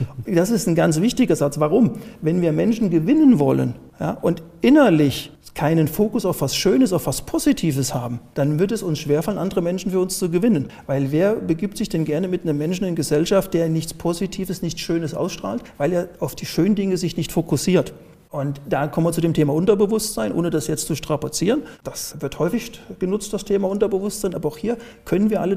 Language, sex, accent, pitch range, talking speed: German, male, German, 155-215 Hz, 205 wpm